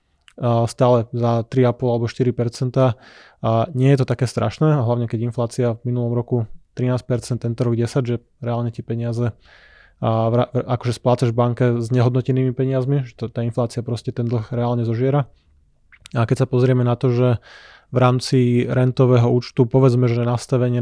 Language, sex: Slovak, male